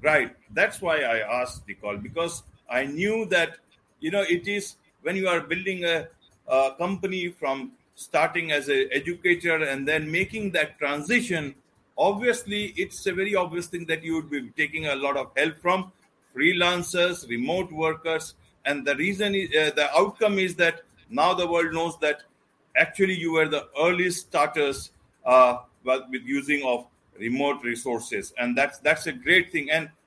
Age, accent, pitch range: 50-69, Indian, 130-180 Hz